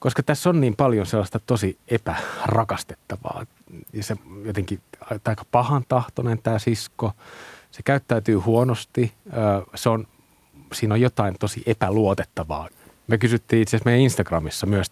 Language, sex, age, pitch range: Finnish, male, 30-49, 105-125 Hz